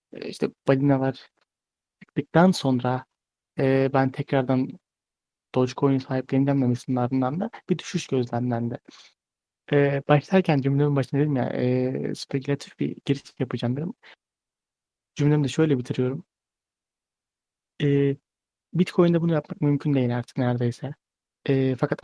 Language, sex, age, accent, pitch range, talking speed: Turkish, male, 30-49, native, 130-150 Hz, 115 wpm